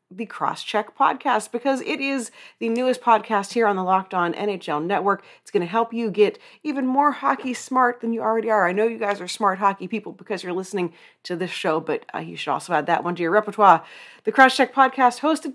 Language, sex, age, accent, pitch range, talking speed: English, female, 40-59, American, 185-245 Hz, 230 wpm